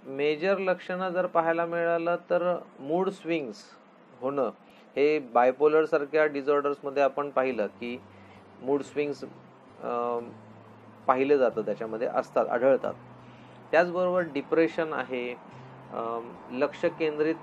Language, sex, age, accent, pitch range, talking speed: Marathi, male, 30-49, native, 130-170 Hz, 95 wpm